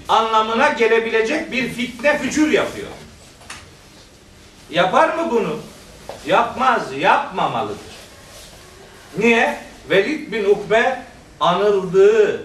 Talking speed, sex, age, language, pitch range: 75 wpm, male, 50-69, Turkish, 200-250 Hz